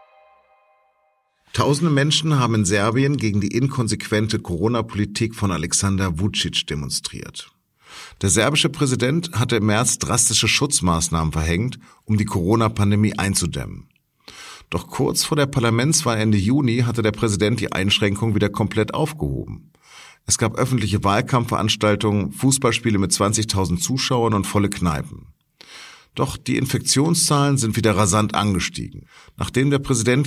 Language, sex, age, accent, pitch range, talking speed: German, male, 50-69, German, 95-120 Hz, 125 wpm